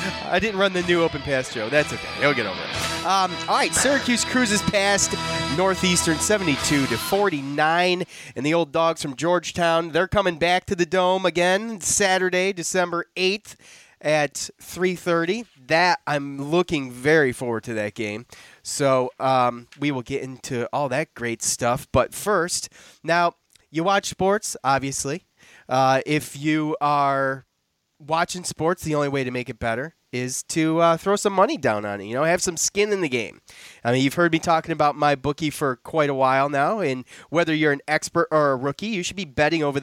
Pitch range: 140-175 Hz